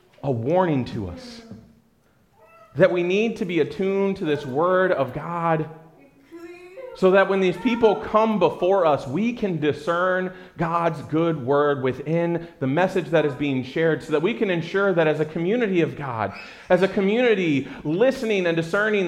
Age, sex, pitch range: 30-49, male, 165-220 Hz